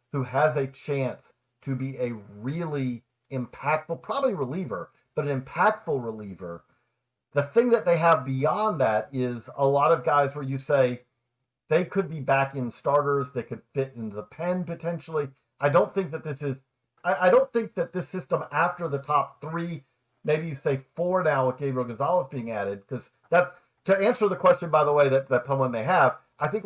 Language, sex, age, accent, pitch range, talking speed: English, male, 50-69, American, 130-170 Hz, 195 wpm